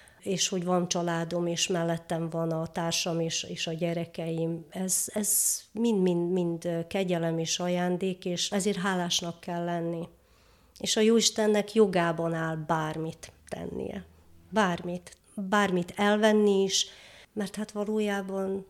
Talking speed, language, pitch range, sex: 120 wpm, Hungarian, 170-190 Hz, female